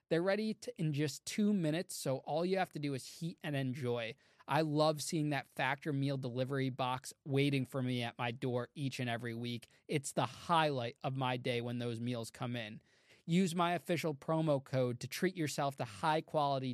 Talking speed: 195 wpm